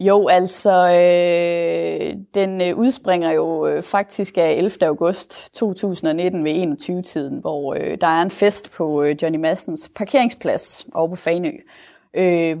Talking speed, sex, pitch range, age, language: 135 wpm, female, 165-200 Hz, 20-39, Danish